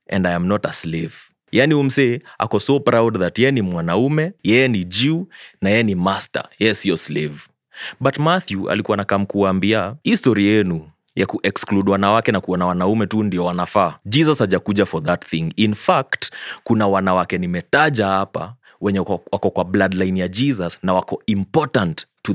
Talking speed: 165 wpm